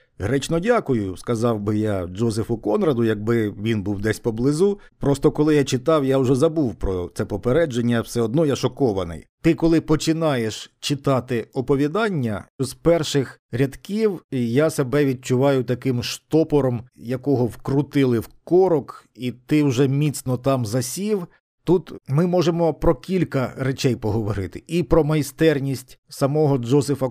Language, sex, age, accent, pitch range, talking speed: Ukrainian, male, 50-69, native, 120-155 Hz, 135 wpm